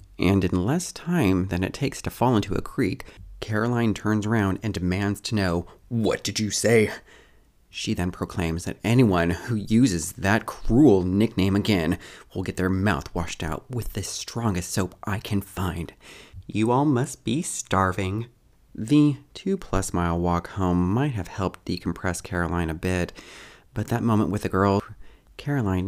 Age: 30-49